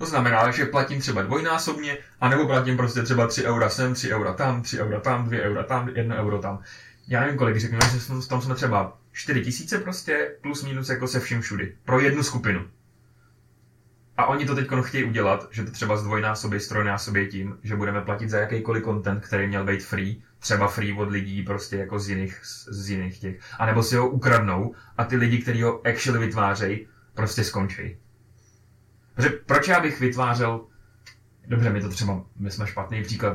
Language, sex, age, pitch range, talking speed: Czech, male, 20-39, 100-120 Hz, 195 wpm